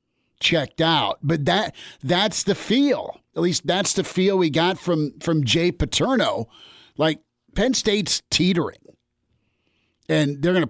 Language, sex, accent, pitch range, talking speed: English, male, American, 135-165 Hz, 140 wpm